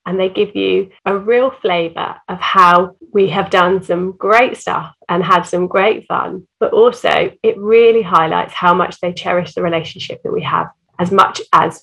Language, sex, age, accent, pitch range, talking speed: English, female, 30-49, British, 175-230 Hz, 190 wpm